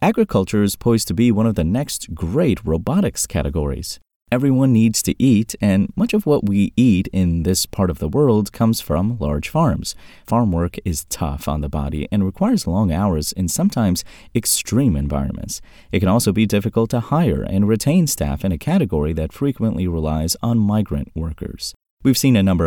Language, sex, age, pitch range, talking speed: English, male, 30-49, 80-110 Hz, 185 wpm